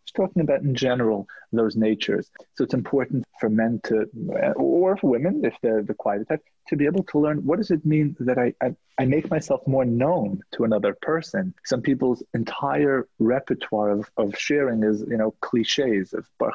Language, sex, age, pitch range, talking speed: English, male, 30-49, 115-155 Hz, 190 wpm